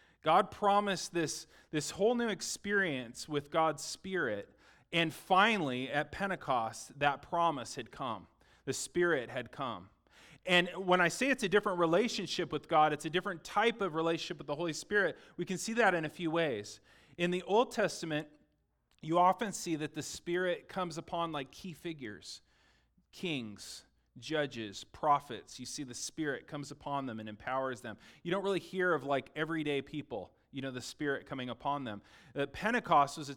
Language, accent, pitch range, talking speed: English, American, 145-180 Hz, 175 wpm